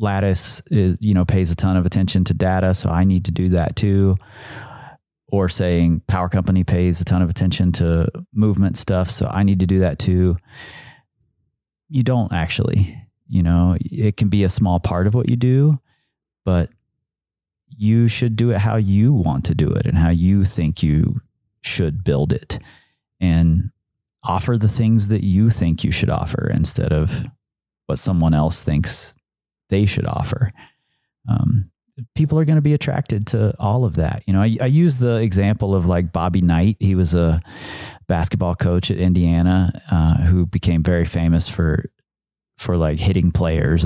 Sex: male